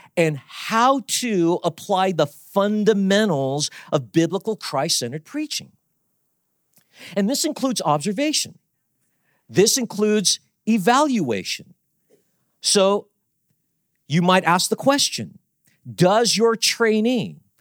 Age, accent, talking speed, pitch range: 50-69, American, 90 wpm, 165-220 Hz